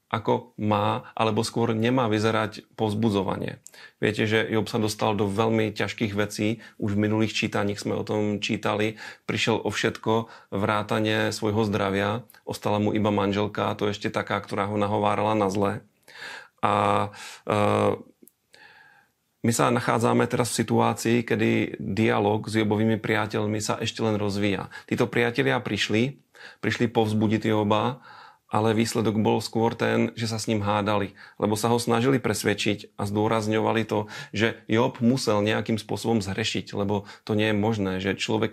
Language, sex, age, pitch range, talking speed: Slovak, male, 30-49, 105-115 Hz, 150 wpm